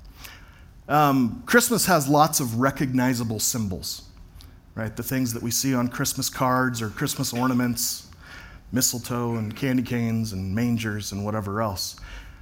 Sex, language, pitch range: male, English, 95-145 Hz